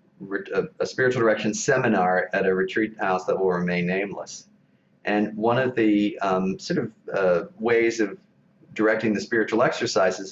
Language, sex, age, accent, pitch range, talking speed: English, male, 40-59, American, 100-125 Hz, 155 wpm